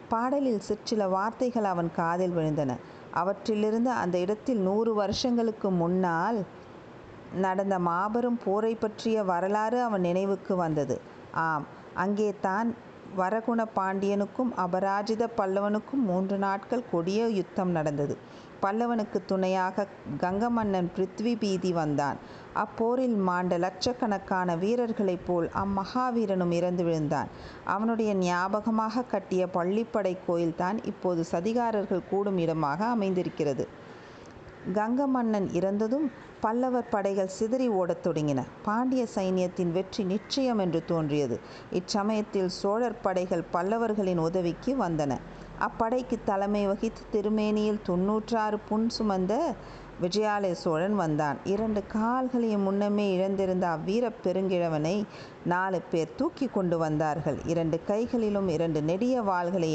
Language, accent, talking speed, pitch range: Tamil, native, 105 wpm, 175-220 Hz